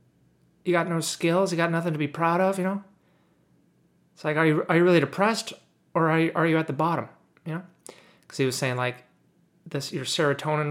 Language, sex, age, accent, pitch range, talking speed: English, male, 30-49, American, 145-175 Hz, 220 wpm